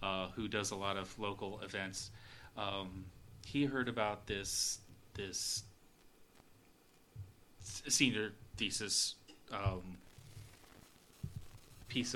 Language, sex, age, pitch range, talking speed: English, male, 30-49, 100-115 Hz, 95 wpm